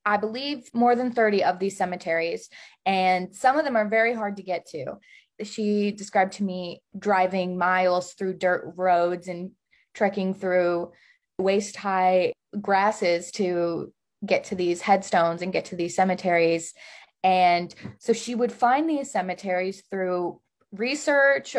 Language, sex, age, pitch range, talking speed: English, female, 20-39, 185-235 Hz, 140 wpm